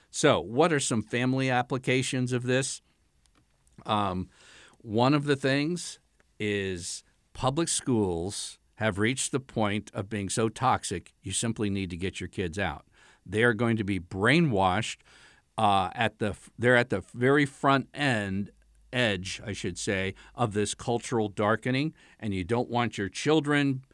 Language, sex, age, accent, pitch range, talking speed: English, male, 50-69, American, 105-130 Hz, 150 wpm